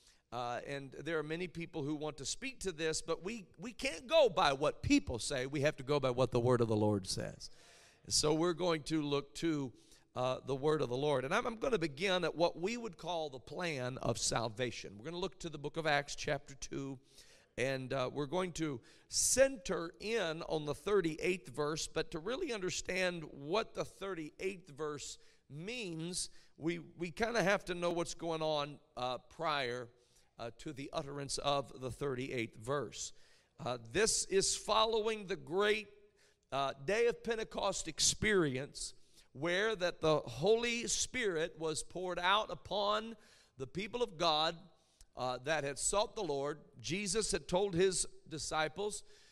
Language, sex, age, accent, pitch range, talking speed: English, male, 50-69, American, 140-200 Hz, 180 wpm